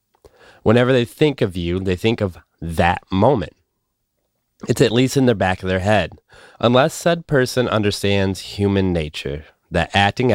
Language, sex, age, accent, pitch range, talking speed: English, male, 30-49, American, 90-110 Hz, 155 wpm